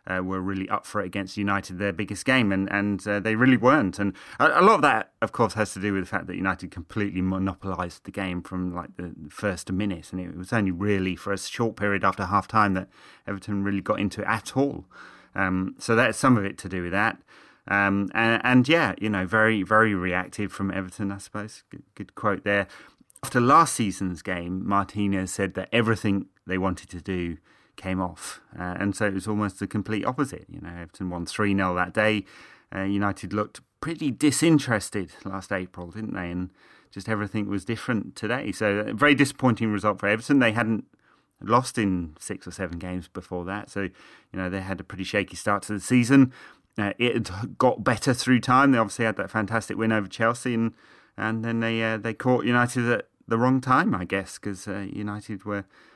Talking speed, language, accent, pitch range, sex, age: 210 wpm, English, British, 95-110 Hz, male, 30-49